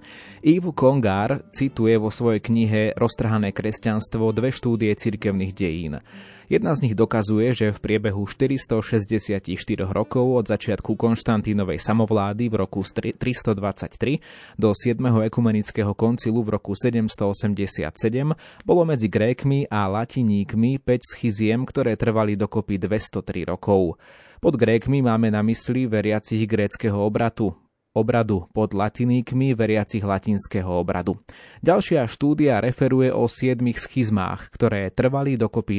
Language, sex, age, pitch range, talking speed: Slovak, male, 20-39, 100-120 Hz, 115 wpm